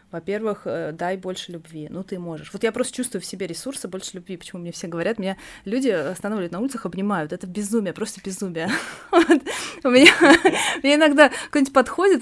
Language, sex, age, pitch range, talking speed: Russian, female, 20-39, 180-230 Hz, 170 wpm